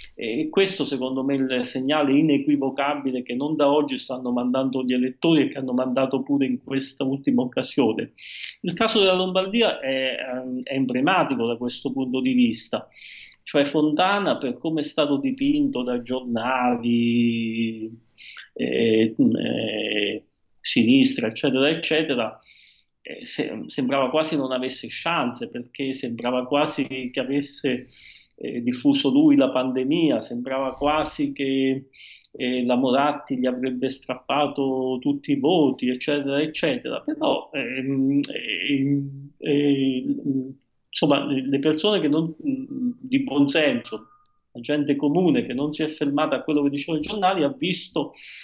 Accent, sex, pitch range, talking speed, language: native, male, 130-155 Hz, 130 wpm, Italian